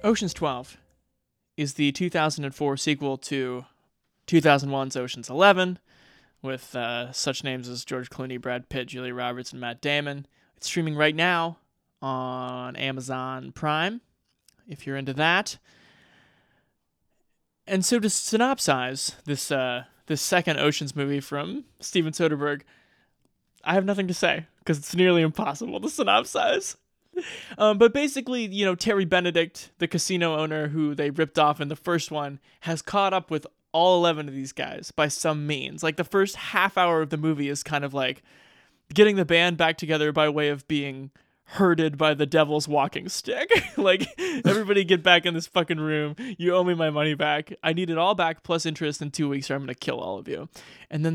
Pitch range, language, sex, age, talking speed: 140-180 Hz, English, male, 20-39, 175 wpm